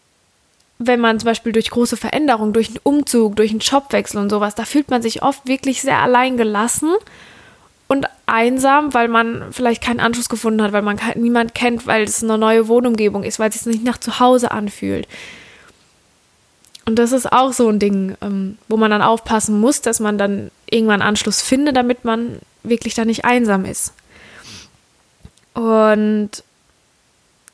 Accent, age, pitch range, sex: German, 20-39, 215-245 Hz, female